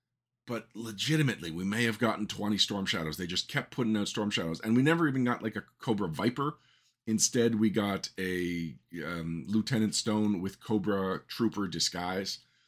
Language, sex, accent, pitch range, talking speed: English, male, American, 90-120 Hz, 170 wpm